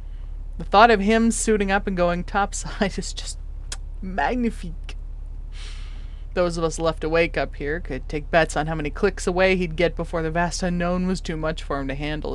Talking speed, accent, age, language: 195 wpm, American, 20-39, English